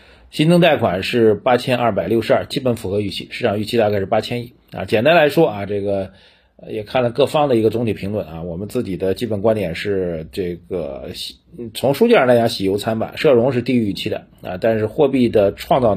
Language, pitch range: Chinese, 95-125 Hz